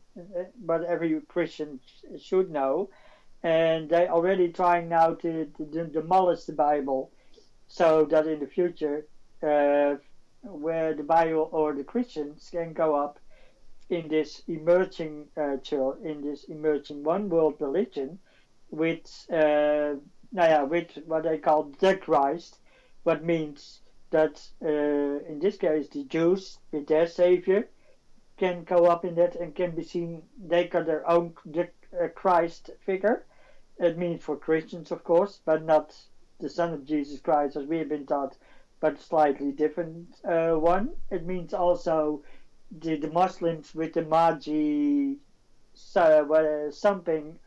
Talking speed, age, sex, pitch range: 140 wpm, 60-79, male, 150-175 Hz